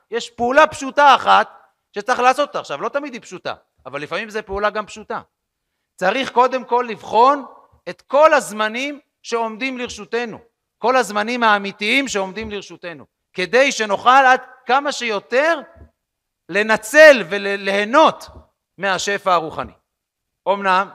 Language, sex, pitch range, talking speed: Hebrew, male, 180-235 Hz, 120 wpm